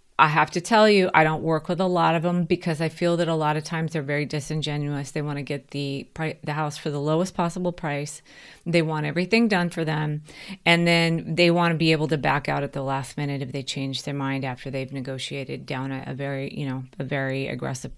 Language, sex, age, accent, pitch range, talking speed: English, female, 30-49, American, 145-180 Hz, 245 wpm